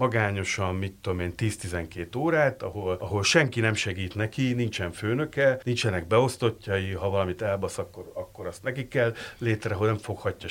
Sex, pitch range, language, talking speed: male, 95-120 Hz, Hungarian, 160 wpm